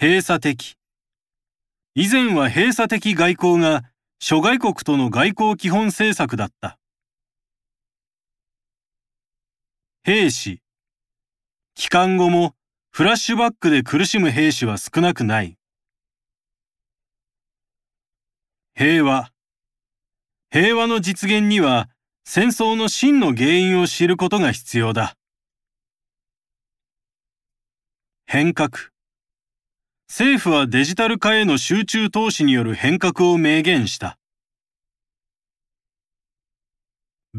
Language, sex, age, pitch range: Japanese, male, 40-59, 110-185 Hz